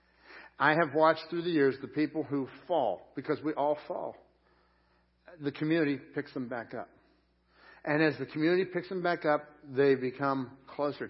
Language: English